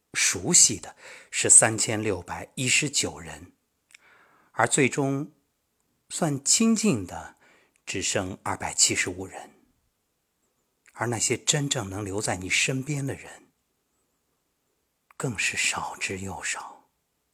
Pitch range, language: 90-135 Hz, Chinese